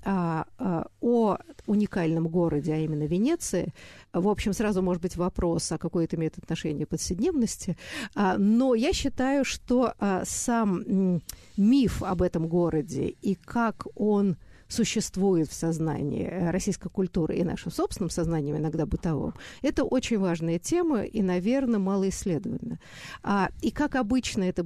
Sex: female